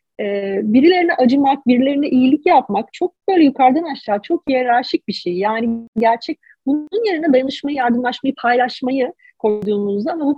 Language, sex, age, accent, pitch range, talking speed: Turkish, female, 40-59, native, 220-295 Hz, 140 wpm